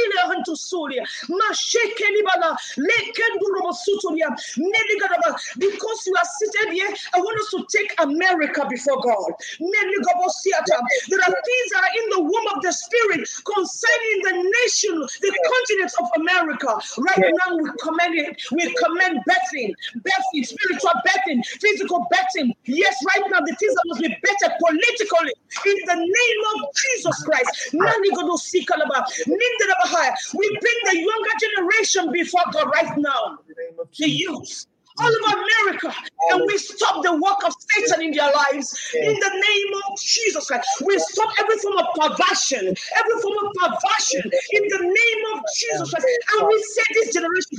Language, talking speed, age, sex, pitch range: English, 140 wpm, 40-59, female, 330-420 Hz